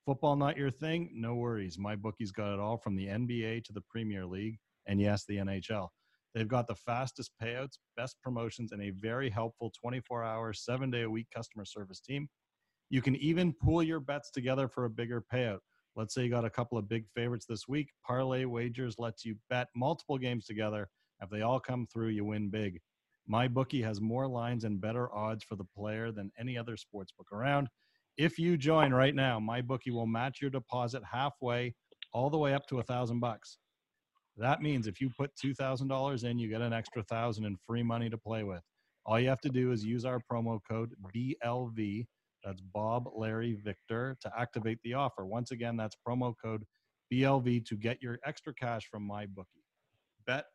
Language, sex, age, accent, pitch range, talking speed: English, male, 40-59, American, 110-130 Hz, 200 wpm